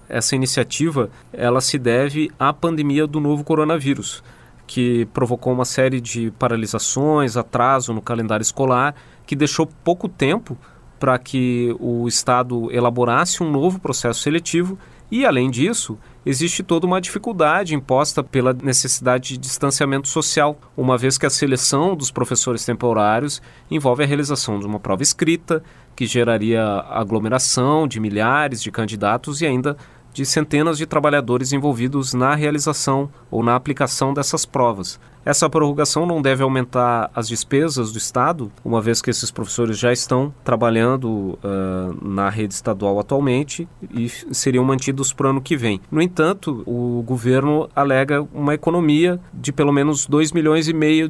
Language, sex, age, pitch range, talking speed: Portuguese, male, 30-49, 120-150 Hz, 150 wpm